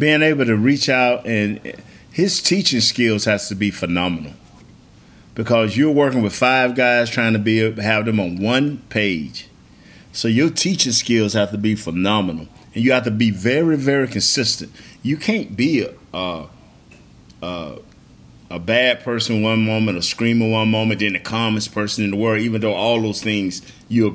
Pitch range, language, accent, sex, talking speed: 105-125 Hz, English, American, male, 175 wpm